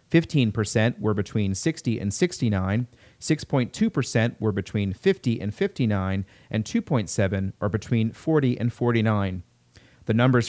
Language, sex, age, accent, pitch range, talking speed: English, male, 30-49, American, 105-130 Hz, 115 wpm